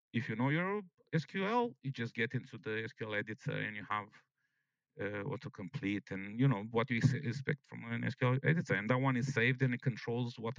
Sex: male